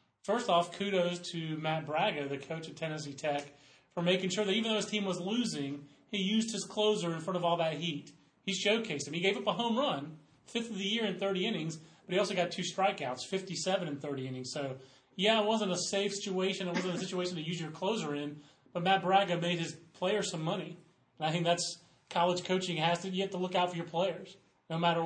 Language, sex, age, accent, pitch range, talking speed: English, male, 30-49, American, 150-190 Hz, 235 wpm